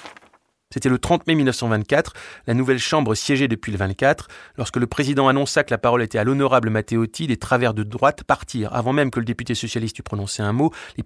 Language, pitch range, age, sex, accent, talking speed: French, 115-140 Hz, 30-49, male, French, 210 wpm